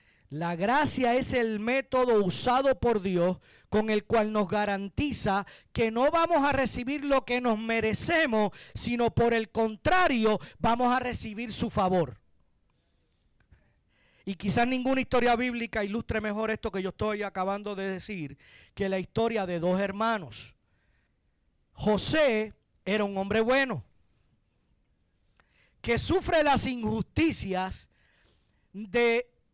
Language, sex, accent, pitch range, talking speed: Spanish, male, American, 200-255 Hz, 125 wpm